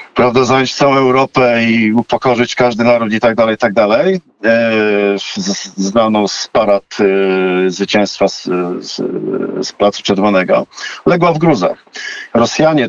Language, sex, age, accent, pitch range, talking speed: Polish, male, 50-69, native, 95-120 Hz, 115 wpm